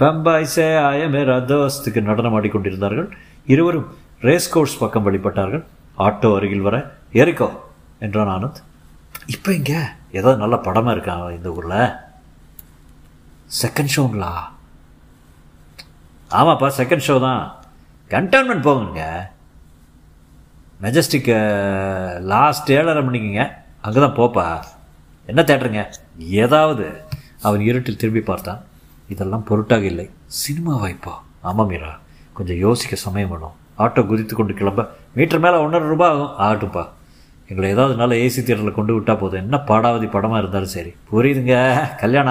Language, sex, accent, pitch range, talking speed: Tamil, male, native, 90-130 Hz, 115 wpm